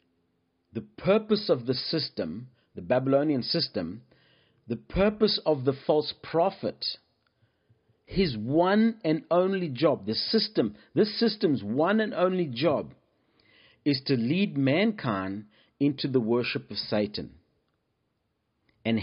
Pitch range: 115-170 Hz